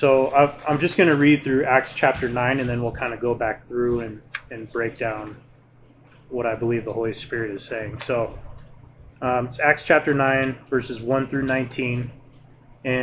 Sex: male